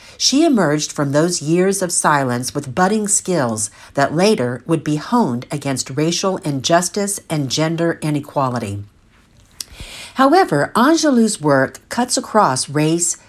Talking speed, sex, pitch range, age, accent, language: 120 wpm, female, 140-200 Hz, 50-69, American, English